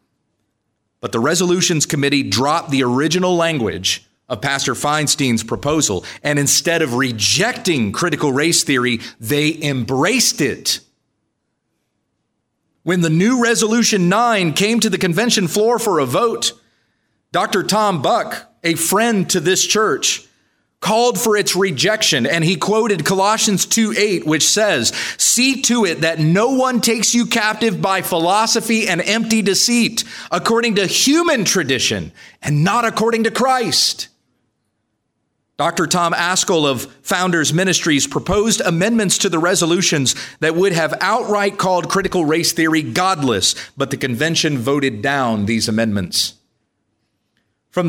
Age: 30-49